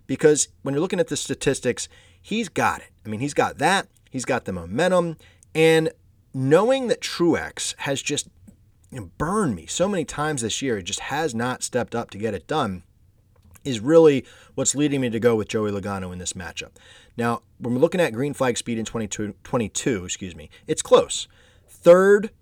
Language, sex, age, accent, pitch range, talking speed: English, male, 30-49, American, 100-140 Hz, 185 wpm